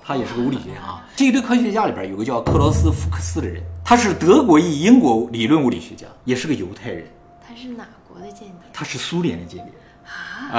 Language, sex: Chinese, male